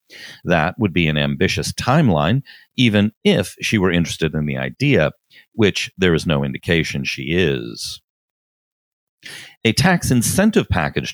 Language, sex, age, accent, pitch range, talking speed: English, male, 50-69, American, 85-140 Hz, 135 wpm